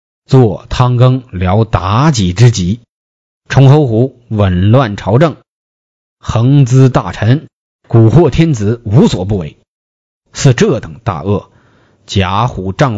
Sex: male